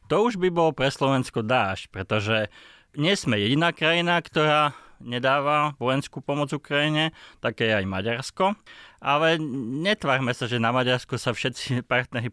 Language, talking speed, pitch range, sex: Slovak, 140 wpm, 110-140 Hz, male